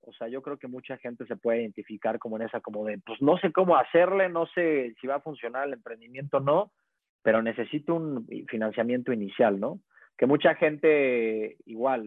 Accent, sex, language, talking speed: Mexican, male, Spanish, 200 wpm